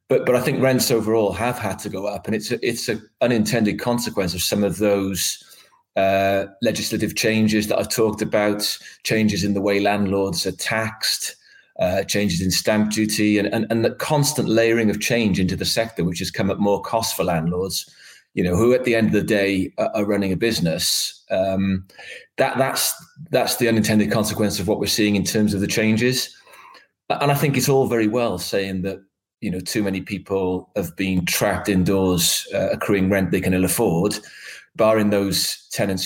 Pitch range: 95-110 Hz